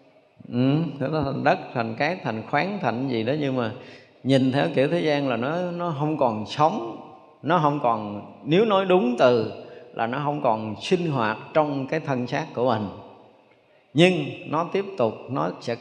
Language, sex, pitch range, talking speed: Vietnamese, male, 115-160 Hz, 180 wpm